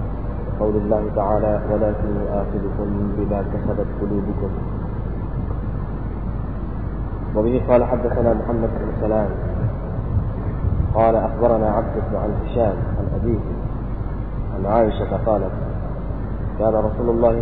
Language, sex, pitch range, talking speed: Malay, male, 105-115 Hz, 115 wpm